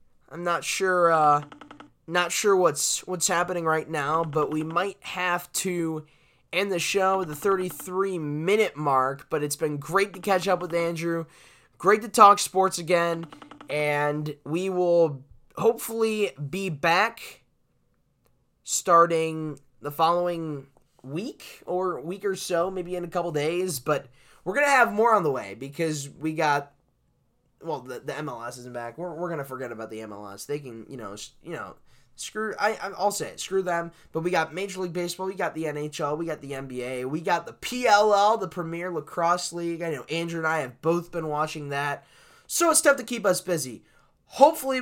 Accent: American